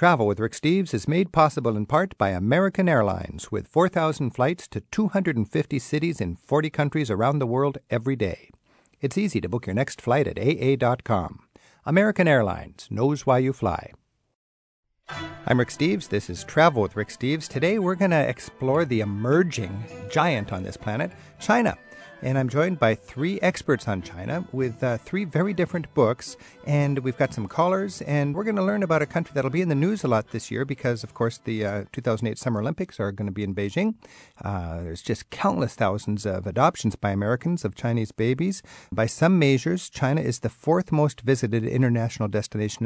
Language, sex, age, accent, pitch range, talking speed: English, male, 50-69, American, 110-155 Hz, 190 wpm